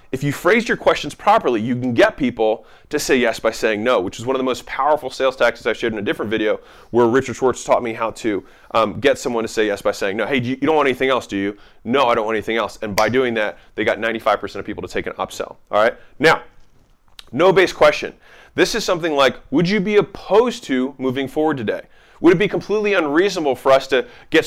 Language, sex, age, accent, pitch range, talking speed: English, male, 30-49, American, 125-170 Hz, 250 wpm